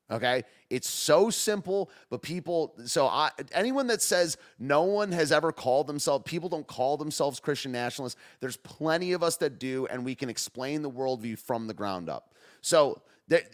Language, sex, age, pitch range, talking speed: English, male, 30-49, 125-175 Hz, 180 wpm